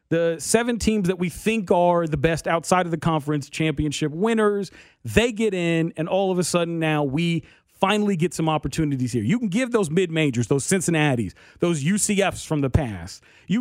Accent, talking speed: American, 190 wpm